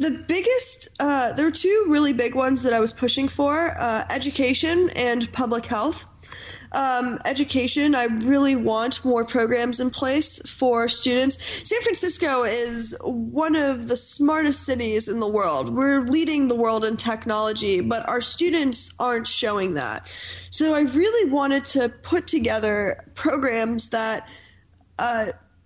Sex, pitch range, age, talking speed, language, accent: female, 235-285 Hz, 10-29, 145 wpm, English, American